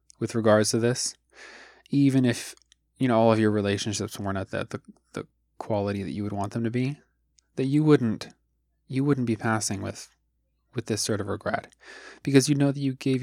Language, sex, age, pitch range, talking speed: English, male, 20-39, 100-120 Hz, 205 wpm